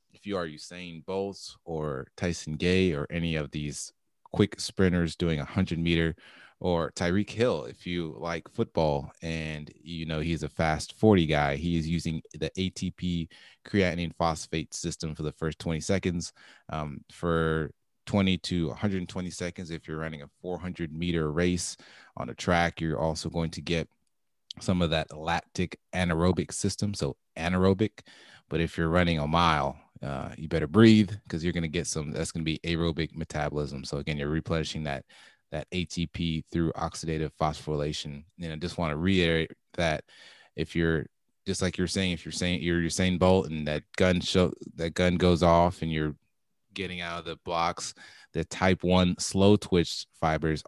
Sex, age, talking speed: male, 30-49, 175 wpm